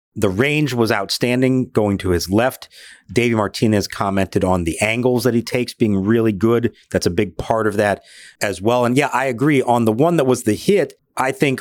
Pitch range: 100-130 Hz